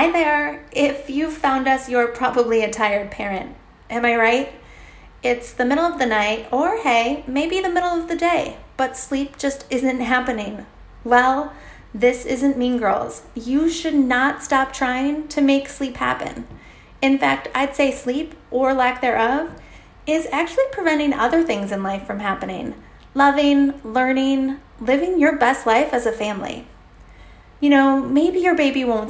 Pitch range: 230-280 Hz